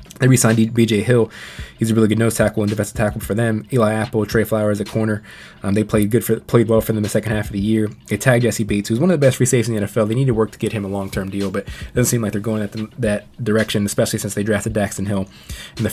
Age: 20-39